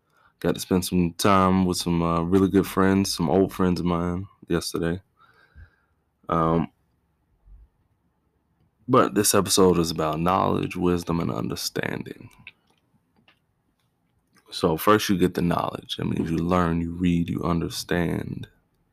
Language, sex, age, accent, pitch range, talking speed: English, male, 20-39, American, 80-95 Hz, 130 wpm